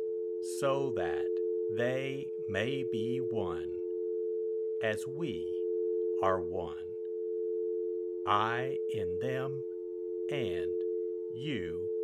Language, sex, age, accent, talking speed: English, male, 60-79, American, 75 wpm